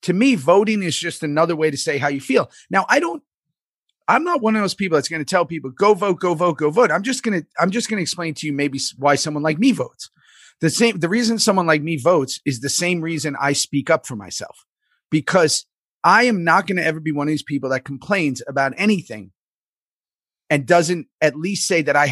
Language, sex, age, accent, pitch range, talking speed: English, male, 30-49, American, 140-175 Hz, 240 wpm